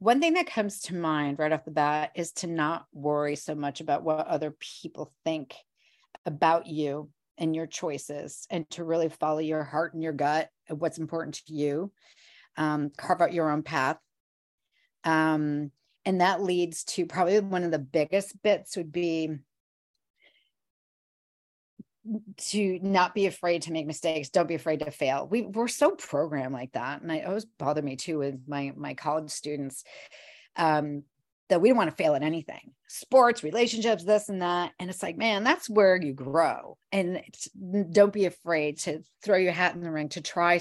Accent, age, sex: American, 40-59, female